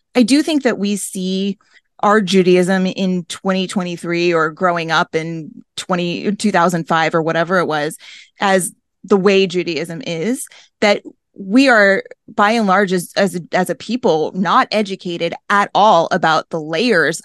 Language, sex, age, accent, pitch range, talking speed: English, female, 20-39, American, 180-240 Hz, 155 wpm